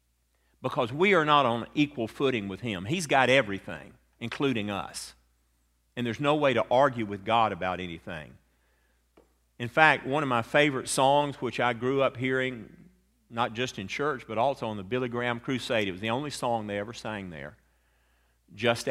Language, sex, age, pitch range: English, male, 50-69, 95-150 Hz